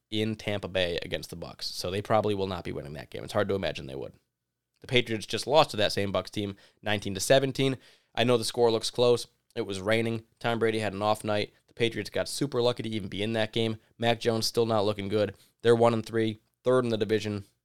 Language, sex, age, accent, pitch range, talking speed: English, male, 20-39, American, 100-115 Hz, 240 wpm